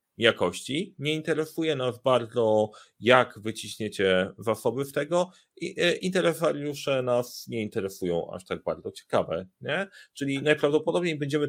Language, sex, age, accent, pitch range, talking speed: Polish, male, 40-59, native, 120-150 Hz, 125 wpm